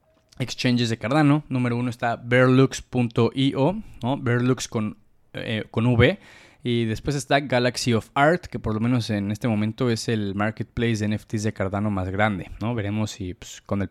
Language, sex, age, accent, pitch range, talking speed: Spanish, male, 20-39, Mexican, 110-130 Hz, 175 wpm